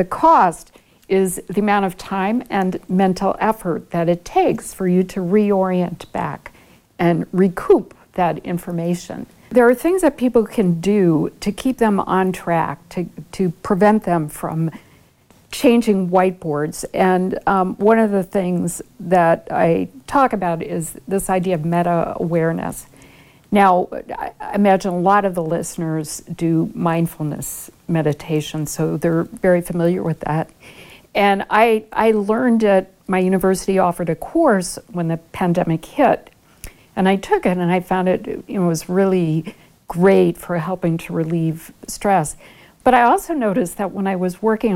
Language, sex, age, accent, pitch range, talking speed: English, female, 60-79, American, 170-215 Hz, 150 wpm